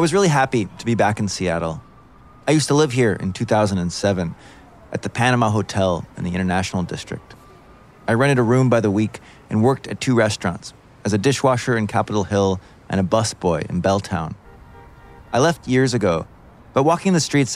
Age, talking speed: 20-39, 190 wpm